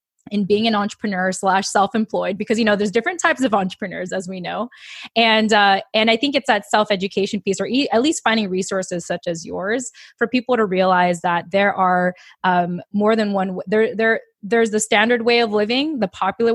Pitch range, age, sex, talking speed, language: 185-230 Hz, 20-39, female, 200 wpm, English